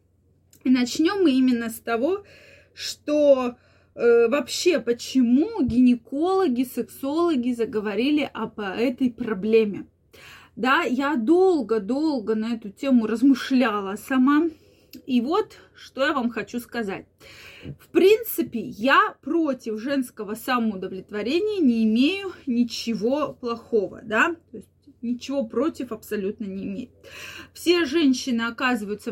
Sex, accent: female, native